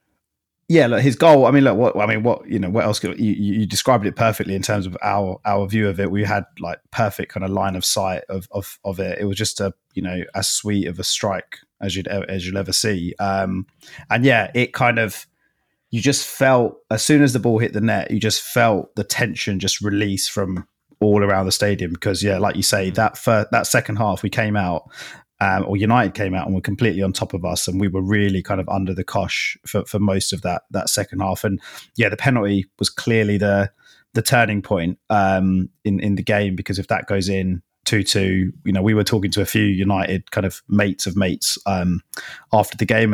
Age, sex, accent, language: 20-39, male, British, English